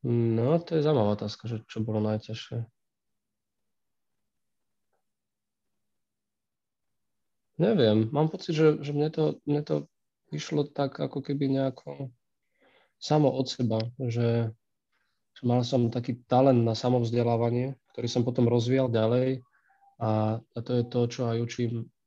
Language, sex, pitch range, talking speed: Czech, male, 115-130 Hz, 125 wpm